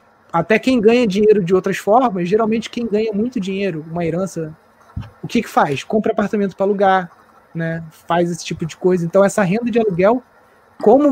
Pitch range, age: 175-225 Hz, 20-39